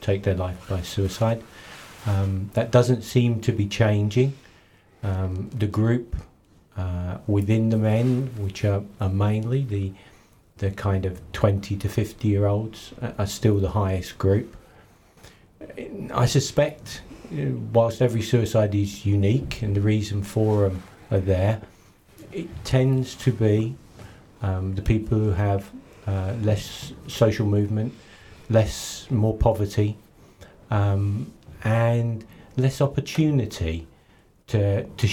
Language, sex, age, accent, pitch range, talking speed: English, male, 40-59, British, 95-115 Hz, 130 wpm